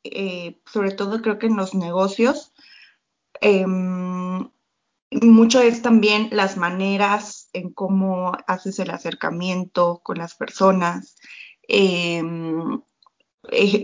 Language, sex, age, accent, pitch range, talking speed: Spanish, female, 20-39, Mexican, 185-230 Hz, 105 wpm